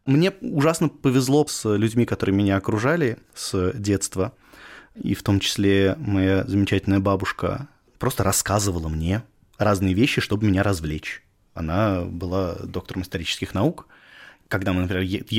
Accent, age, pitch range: native, 20-39, 95-120 Hz